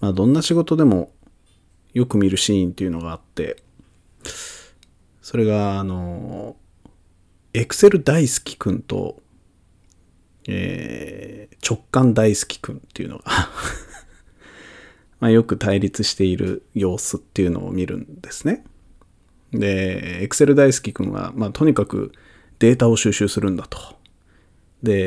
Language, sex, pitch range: Japanese, male, 90-120 Hz